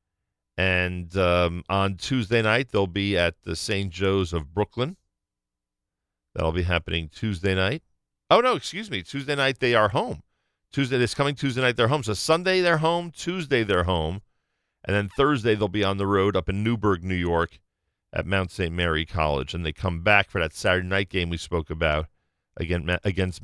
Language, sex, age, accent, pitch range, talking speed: English, male, 40-59, American, 85-105 Hz, 185 wpm